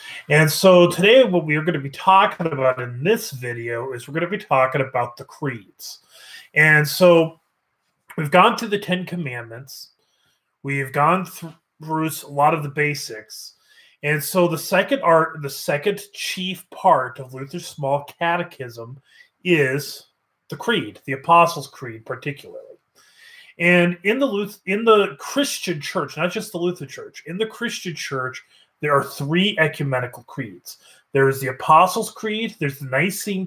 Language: English